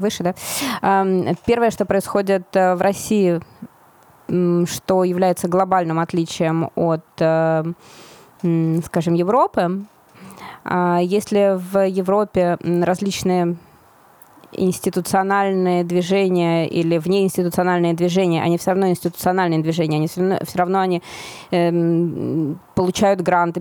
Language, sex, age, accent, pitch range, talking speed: Russian, female, 20-39, native, 170-195 Hz, 85 wpm